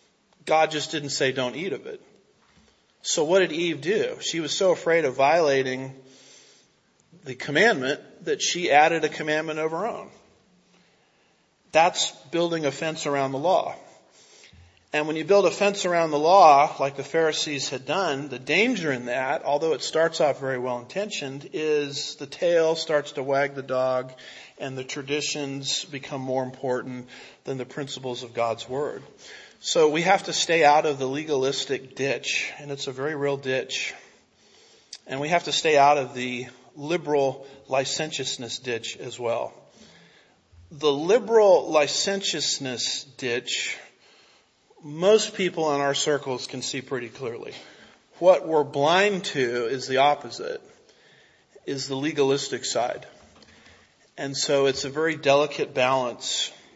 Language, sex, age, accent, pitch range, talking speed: English, male, 40-59, American, 135-165 Hz, 150 wpm